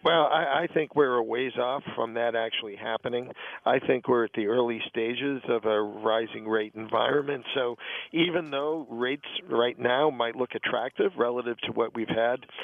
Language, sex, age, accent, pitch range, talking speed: English, male, 50-69, American, 120-145 Hz, 180 wpm